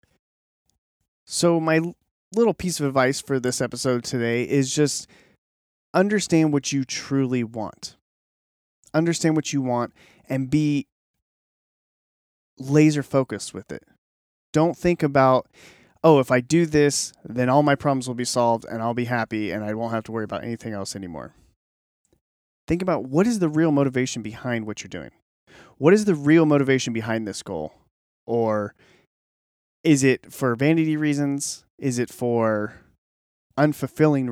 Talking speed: 150 wpm